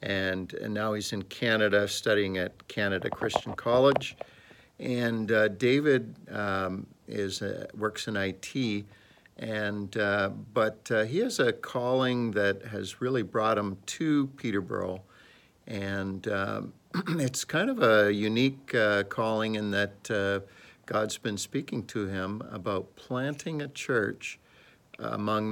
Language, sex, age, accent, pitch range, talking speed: English, male, 60-79, American, 100-120 Hz, 135 wpm